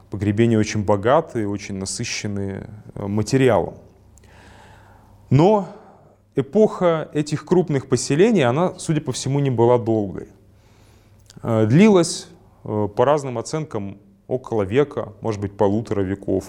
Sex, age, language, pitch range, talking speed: male, 30-49, Russian, 100-135 Hz, 100 wpm